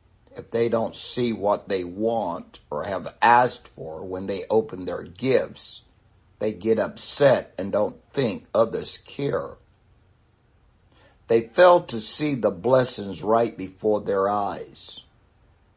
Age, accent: 60-79, American